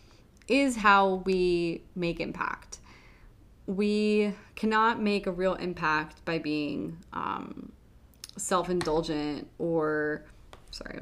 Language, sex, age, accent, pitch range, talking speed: English, female, 20-39, American, 170-210 Hz, 95 wpm